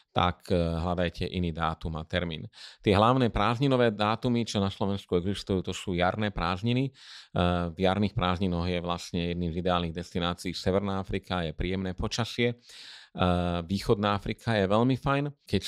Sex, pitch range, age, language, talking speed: male, 90-105 Hz, 30-49, Slovak, 145 wpm